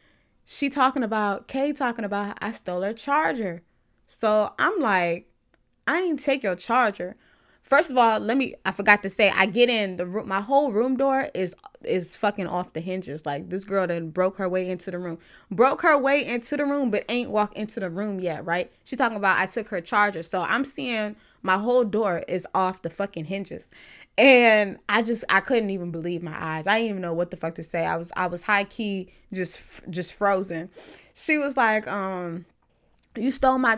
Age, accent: 20-39, American